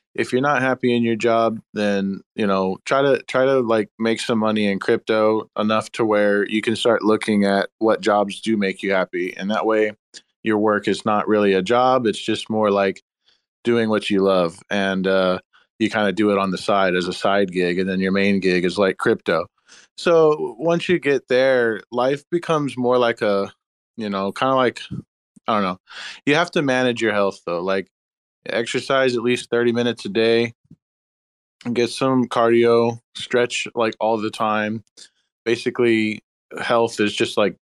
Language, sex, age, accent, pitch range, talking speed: English, male, 20-39, American, 100-120 Hz, 195 wpm